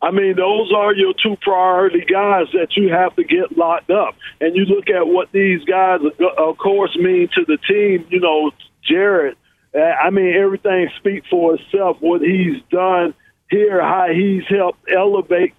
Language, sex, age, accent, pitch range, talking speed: English, male, 50-69, American, 180-215 Hz, 175 wpm